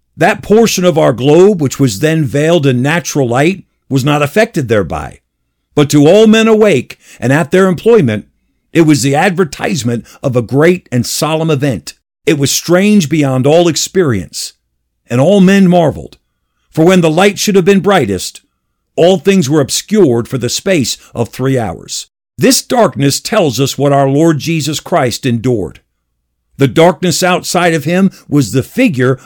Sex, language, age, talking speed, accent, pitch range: male, English, 50-69, 165 wpm, American, 125-175 Hz